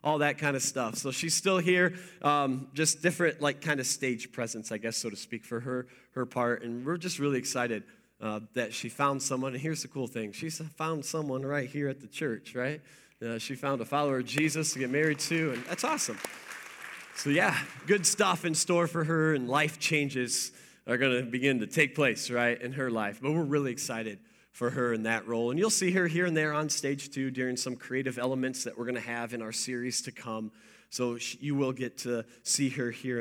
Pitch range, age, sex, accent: 125-155 Hz, 20-39, male, American